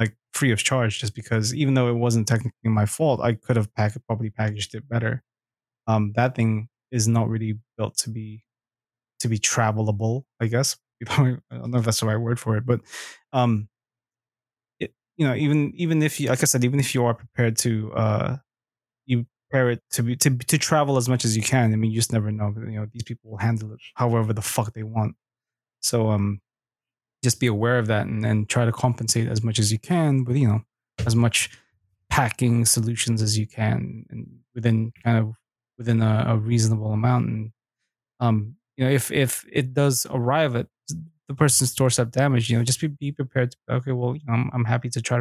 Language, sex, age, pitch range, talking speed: English, male, 20-39, 110-125 Hz, 215 wpm